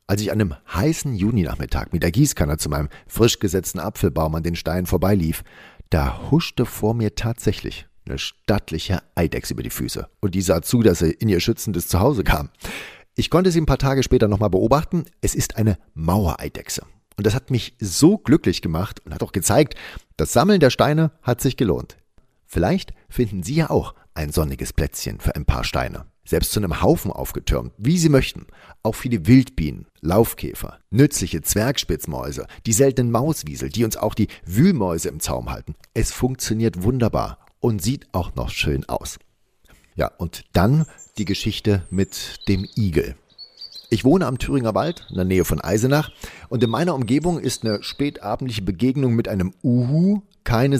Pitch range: 90-125 Hz